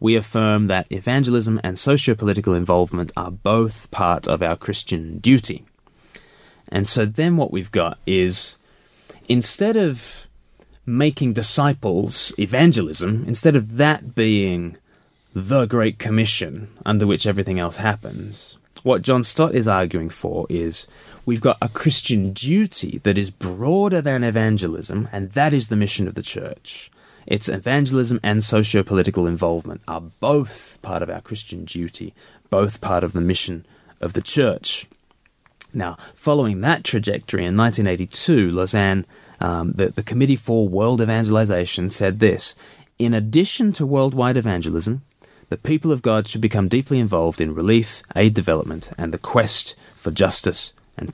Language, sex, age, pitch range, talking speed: English, male, 20-39, 95-125 Hz, 145 wpm